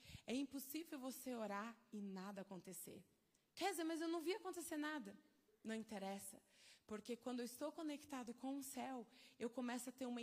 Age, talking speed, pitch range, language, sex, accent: 20-39, 175 wpm, 215-280 Hz, Portuguese, female, Brazilian